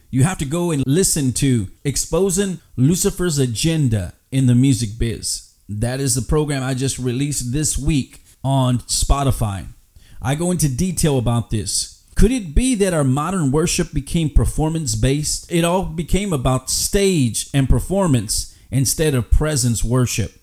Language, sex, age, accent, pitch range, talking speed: English, male, 30-49, American, 120-160 Hz, 155 wpm